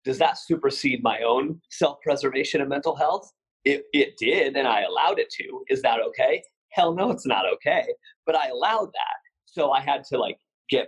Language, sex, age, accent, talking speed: English, male, 30-49, American, 195 wpm